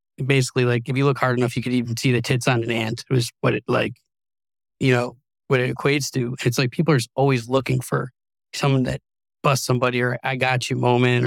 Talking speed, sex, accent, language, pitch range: 230 wpm, male, American, English, 125-140 Hz